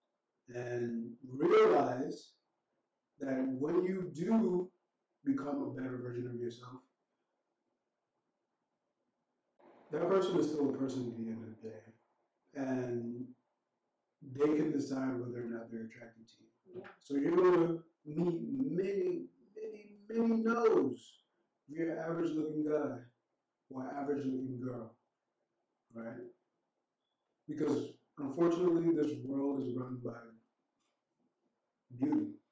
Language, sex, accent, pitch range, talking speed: English, male, American, 120-170 Hz, 120 wpm